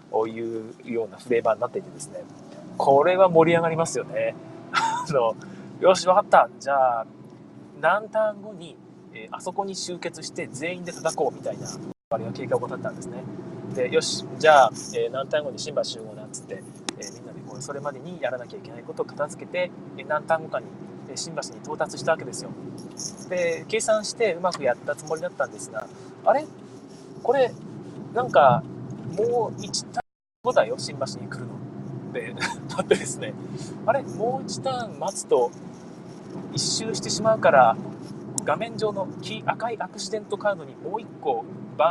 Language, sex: Japanese, male